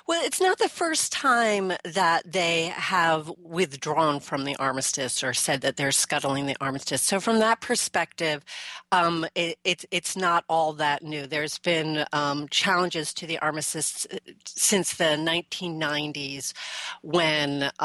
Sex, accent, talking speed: female, American, 145 wpm